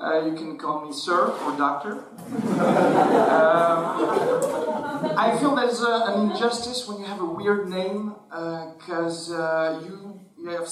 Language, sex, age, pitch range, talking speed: French, male, 40-59, 160-225 Hz, 150 wpm